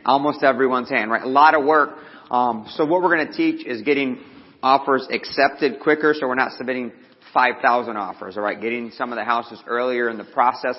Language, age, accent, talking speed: English, 40-59, American, 205 wpm